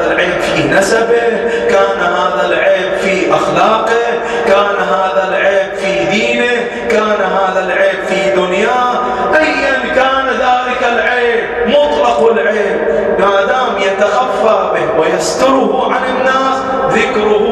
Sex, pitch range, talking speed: male, 205-250 Hz, 105 wpm